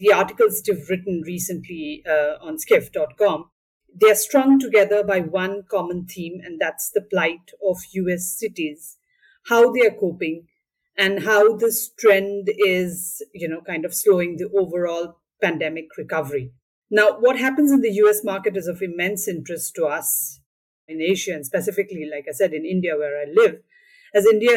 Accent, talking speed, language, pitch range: Indian, 165 wpm, English, 165-205 Hz